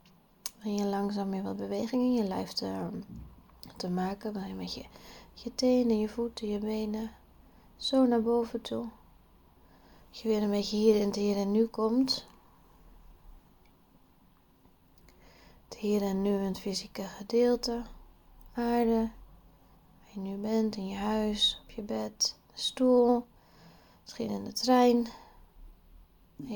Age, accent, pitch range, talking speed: 20-39, Dutch, 195-230 Hz, 140 wpm